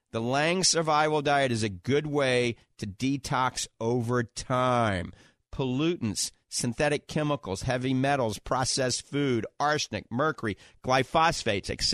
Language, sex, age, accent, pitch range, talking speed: English, male, 40-59, American, 115-145 Hz, 115 wpm